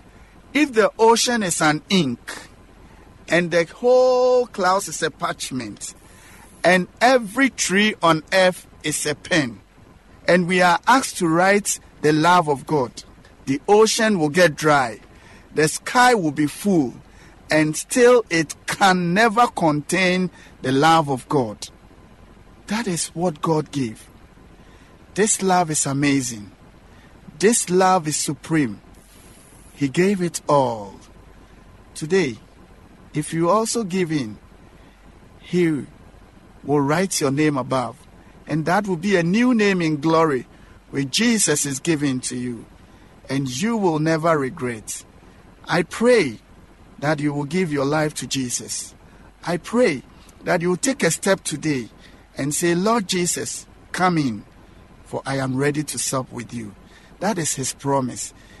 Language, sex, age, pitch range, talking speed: English, male, 50-69, 110-180 Hz, 140 wpm